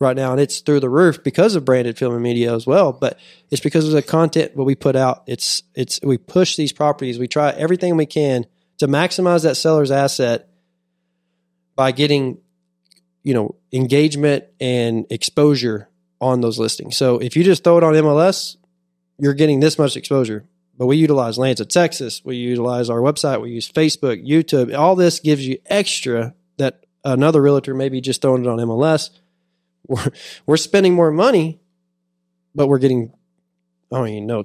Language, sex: English, male